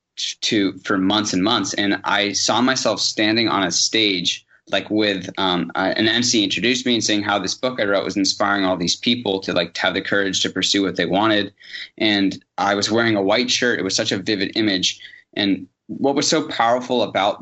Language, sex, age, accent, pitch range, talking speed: English, male, 20-39, American, 95-110 Hz, 215 wpm